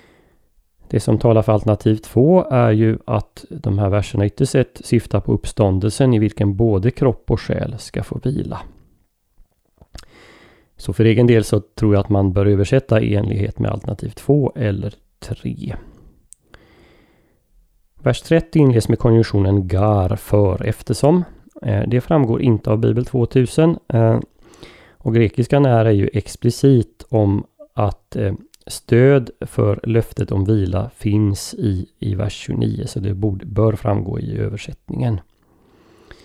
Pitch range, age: 105-125 Hz, 30-49